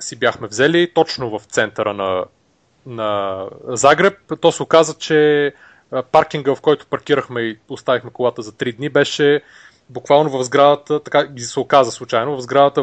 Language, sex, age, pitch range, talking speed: Bulgarian, male, 30-49, 120-150 Hz, 160 wpm